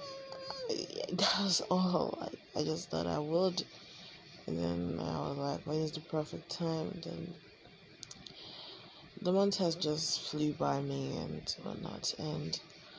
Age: 20-39